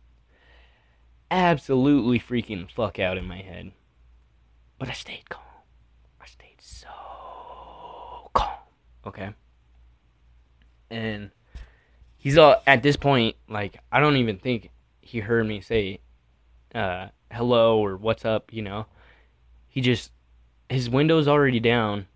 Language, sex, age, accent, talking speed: English, male, 10-29, American, 120 wpm